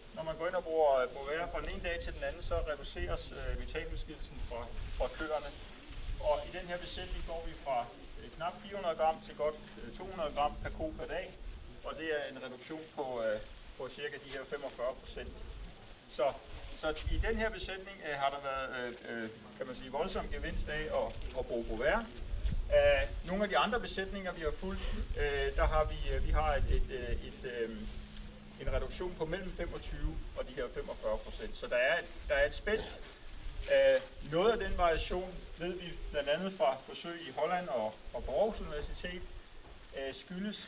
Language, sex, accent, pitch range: Danish, male, native, 140-195 Hz